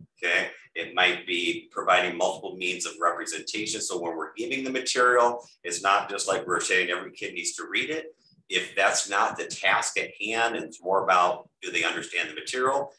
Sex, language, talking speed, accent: male, English, 200 wpm, American